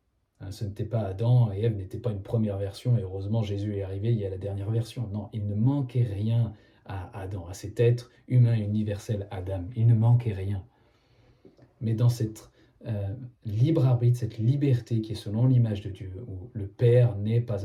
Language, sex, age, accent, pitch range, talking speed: French, male, 40-59, French, 100-120 Hz, 200 wpm